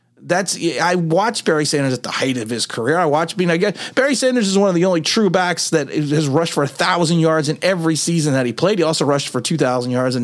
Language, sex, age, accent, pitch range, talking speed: English, male, 30-49, American, 175-250 Hz, 275 wpm